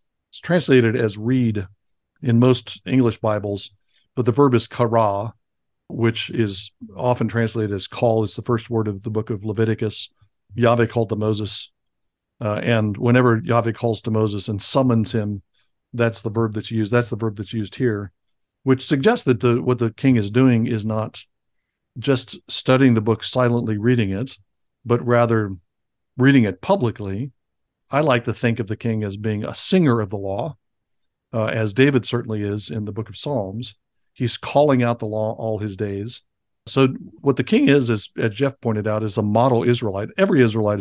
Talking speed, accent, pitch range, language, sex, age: 180 wpm, American, 105-120 Hz, English, male, 60-79